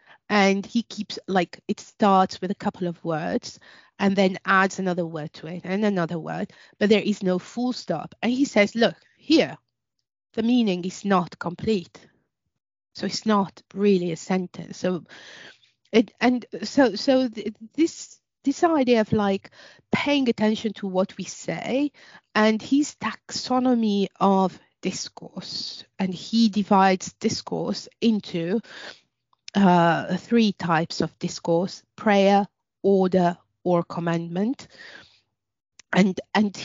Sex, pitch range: female, 180-220 Hz